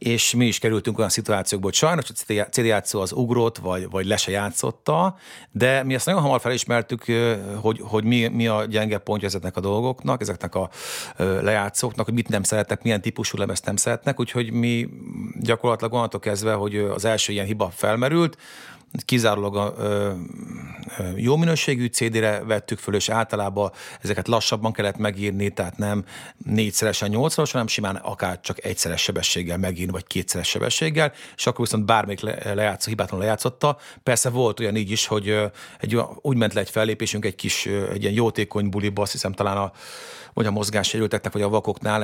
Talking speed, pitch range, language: 165 wpm, 100-125 Hz, Hungarian